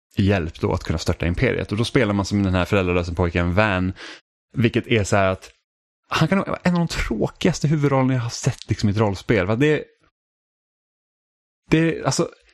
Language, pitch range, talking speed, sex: Swedish, 95-125 Hz, 185 wpm, male